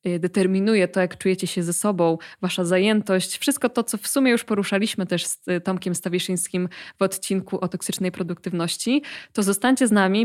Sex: female